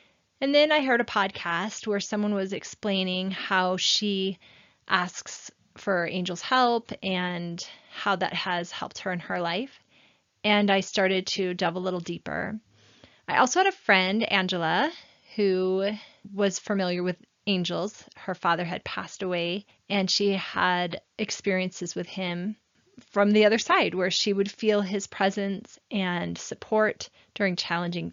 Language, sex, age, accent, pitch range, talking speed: English, female, 30-49, American, 180-210 Hz, 145 wpm